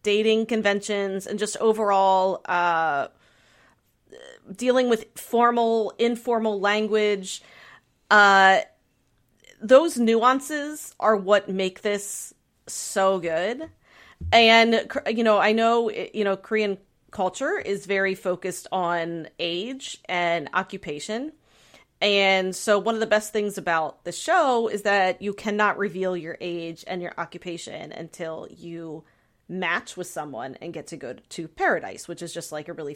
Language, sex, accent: English, female, American